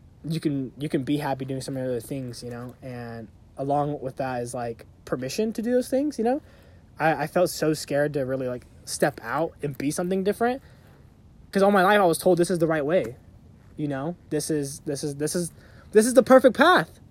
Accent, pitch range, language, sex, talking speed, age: American, 135-185 Hz, English, male, 230 wpm, 20-39